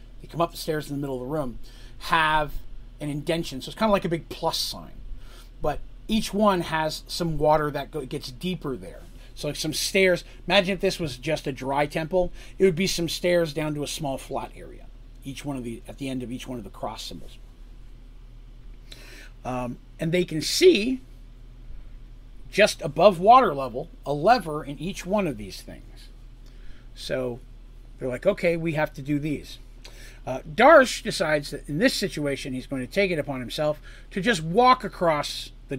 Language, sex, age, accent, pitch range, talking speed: English, male, 40-59, American, 125-170 Hz, 195 wpm